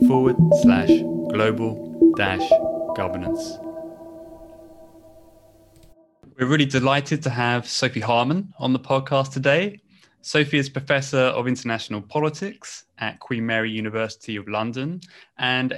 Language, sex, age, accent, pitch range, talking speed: English, male, 20-39, British, 110-140 Hz, 110 wpm